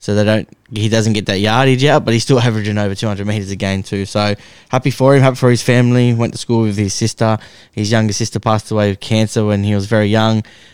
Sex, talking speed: male, 250 wpm